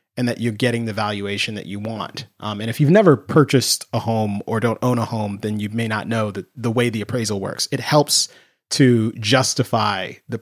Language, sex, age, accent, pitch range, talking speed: English, male, 30-49, American, 105-125 Hz, 220 wpm